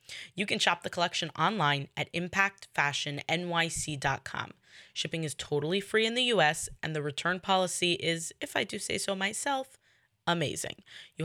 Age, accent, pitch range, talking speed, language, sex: 20-39, American, 150-195 Hz, 150 wpm, English, female